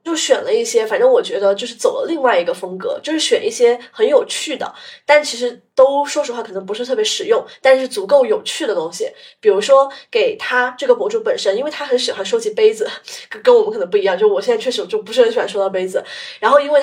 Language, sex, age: Chinese, female, 20-39